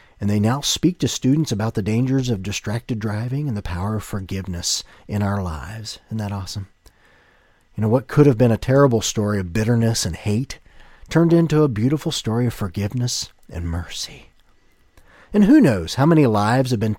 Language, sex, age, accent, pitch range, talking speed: English, male, 40-59, American, 105-155 Hz, 185 wpm